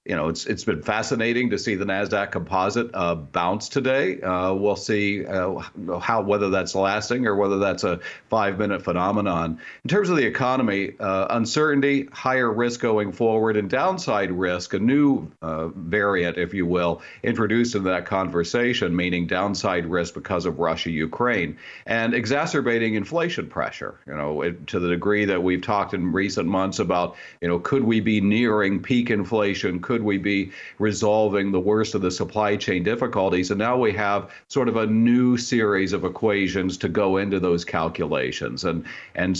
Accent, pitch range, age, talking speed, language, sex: American, 95-110 Hz, 50-69, 170 wpm, English, male